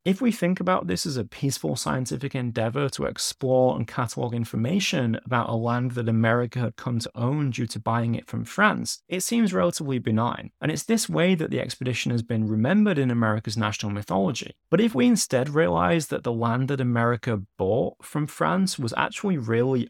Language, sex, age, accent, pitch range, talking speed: English, male, 20-39, British, 115-160 Hz, 195 wpm